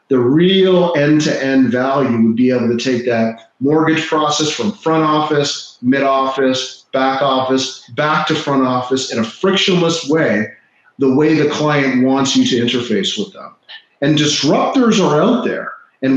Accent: American